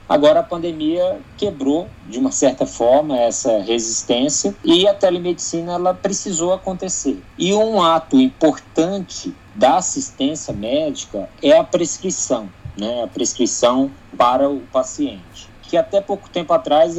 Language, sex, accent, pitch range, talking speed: Portuguese, male, Brazilian, 130-195 Hz, 130 wpm